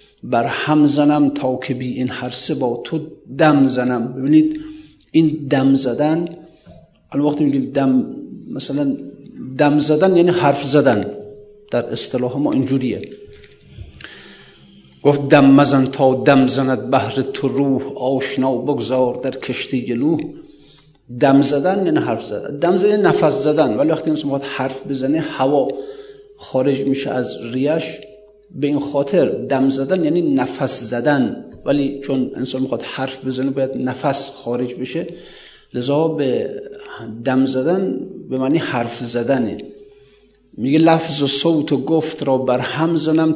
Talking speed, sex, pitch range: 135 wpm, male, 130-165 Hz